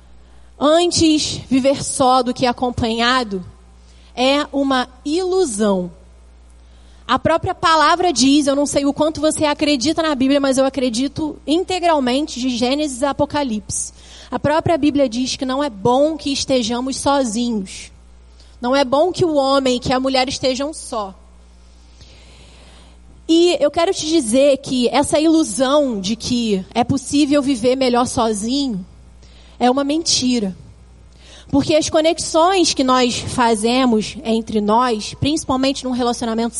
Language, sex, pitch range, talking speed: Portuguese, female, 215-295 Hz, 135 wpm